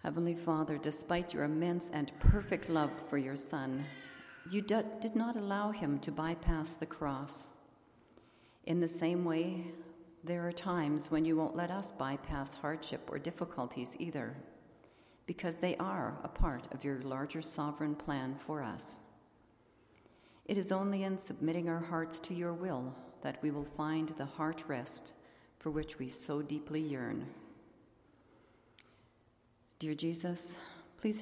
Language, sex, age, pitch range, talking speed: English, female, 50-69, 140-170 Hz, 145 wpm